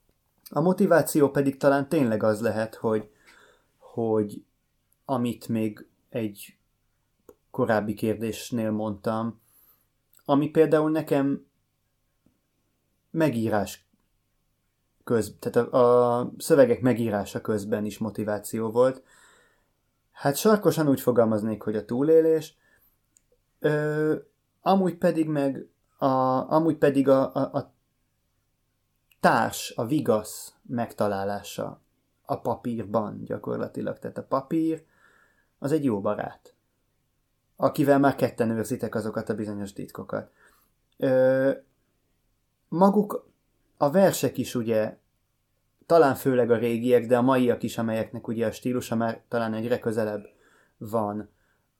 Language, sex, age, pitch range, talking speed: Hungarian, male, 30-49, 110-140 Hz, 100 wpm